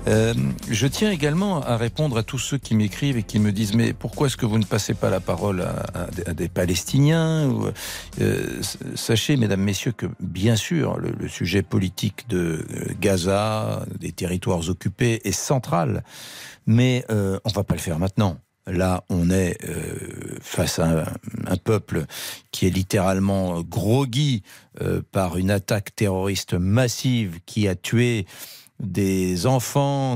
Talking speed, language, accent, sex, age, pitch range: 165 wpm, French, French, male, 60-79, 95-125 Hz